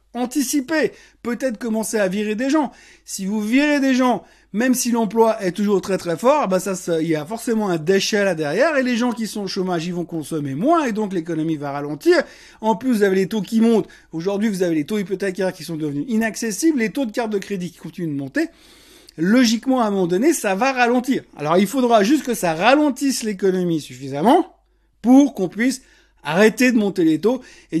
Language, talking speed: French, 220 wpm